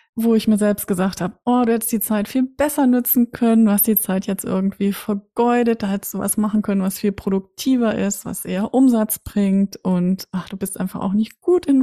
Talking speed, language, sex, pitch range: 225 wpm, German, female, 195-235 Hz